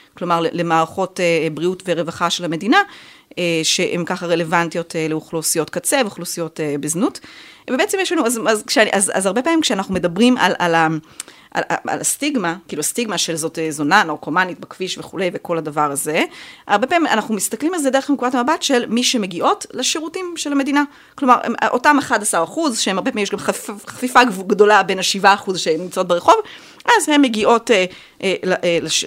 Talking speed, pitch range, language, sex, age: 160 wpm, 175-250 Hz, Hebrew, female, 30-49